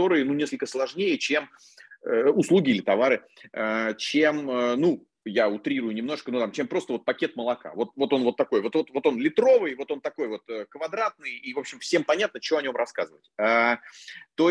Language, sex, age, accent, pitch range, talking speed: Russian, male, 30-49, native, 115-165 Hz, 205 wpm